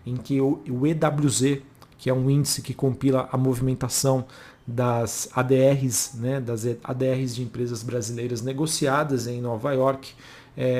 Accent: Brazilian